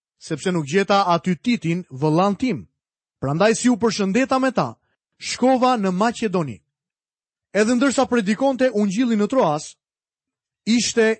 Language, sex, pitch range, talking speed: Croatian, male, 170-235 Hz, 125 wpm